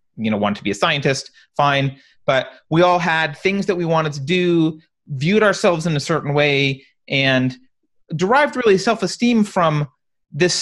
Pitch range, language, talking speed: 130-180 Hz, English, 170 wpm